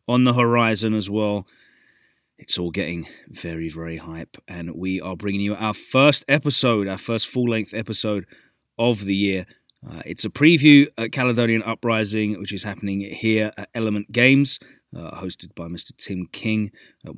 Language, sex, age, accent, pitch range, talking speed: English, male, 30-49, British, 95-115 Hz, 165 wpm